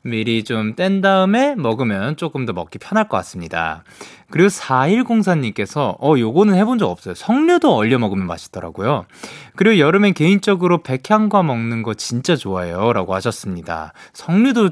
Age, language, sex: 20-39, Korean, male